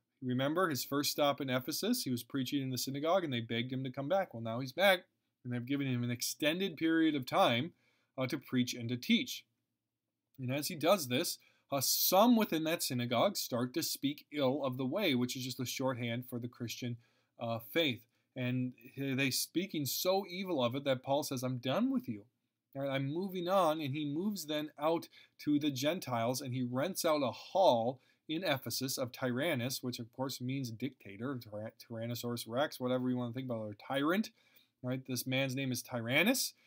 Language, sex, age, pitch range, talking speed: English, male, 20-39, 120-145 Hz, 200 wpm